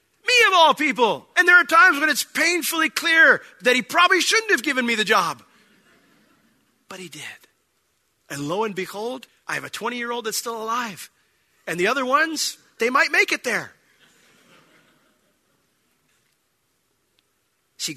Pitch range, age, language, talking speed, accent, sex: 135-195 Hz, 40-59, English, 150 wpm, American, male